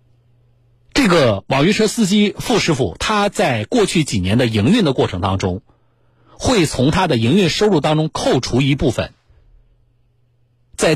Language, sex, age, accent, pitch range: Chinese, male, 50-69, native, 115-155 Hz